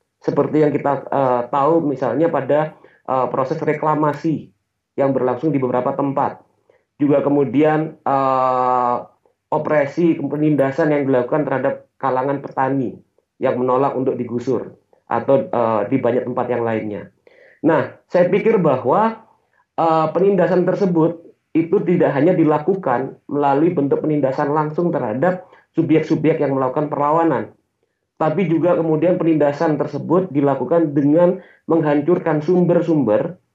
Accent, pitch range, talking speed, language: native, 140-175 Hz, 115 wpm, Indonesian